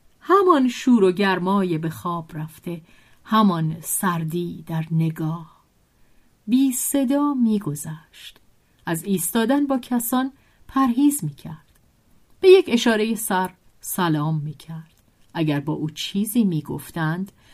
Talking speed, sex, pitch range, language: 105 wpm, female, 155-230 Hz, Persian